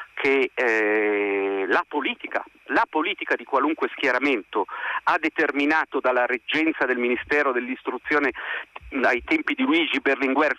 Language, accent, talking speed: Italian, native, 120 wpm